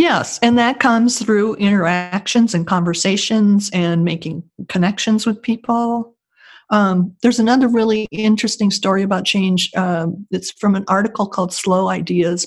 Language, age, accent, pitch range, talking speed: English, 50-69, American, 175-220 Hz, 140 wpm